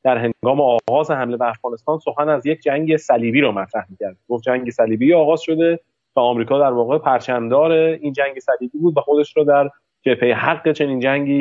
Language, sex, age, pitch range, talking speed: Persian, male, 30-49, 125-155 Hz, 190 wpm